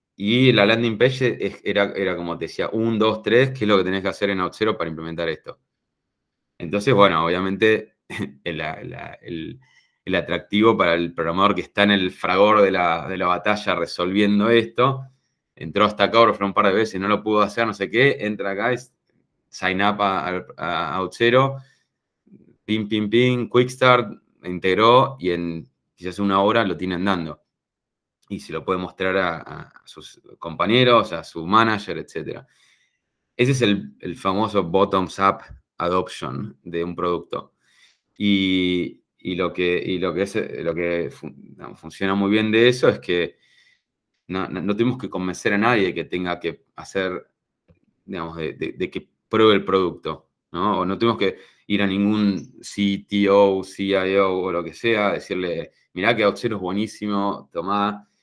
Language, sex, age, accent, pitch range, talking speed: Spanish, male, 20-39, Argentinian, 90-110 Hz, 175 wpm